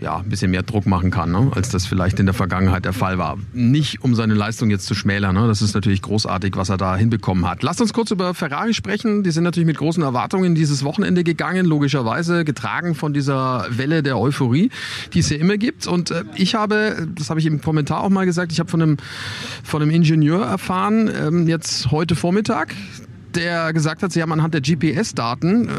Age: 40-59